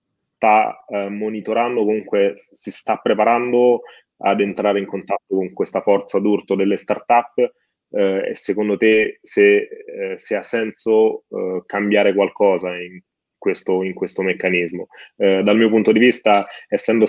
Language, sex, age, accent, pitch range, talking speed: Italian, male, 20-39, native, 95-110 Hz, 135 wpm